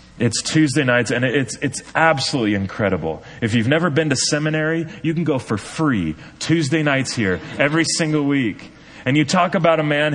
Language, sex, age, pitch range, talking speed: English, male, 30-49, 100-150 Hz, 185 wpm